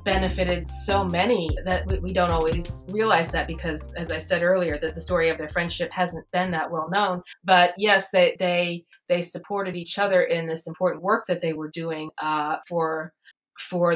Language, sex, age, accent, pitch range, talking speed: English, female, 30-49, American, 165-185 Hz, 190 wpm